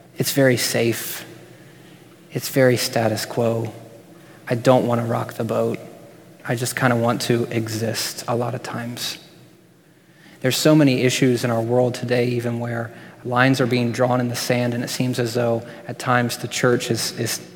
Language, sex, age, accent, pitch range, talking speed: English, male, 30-49, American, 120-140 Hz, 180 wpm